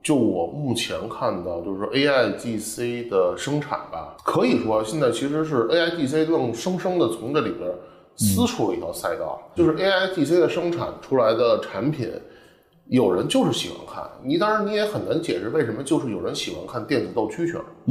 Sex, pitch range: male, 115-155 Hz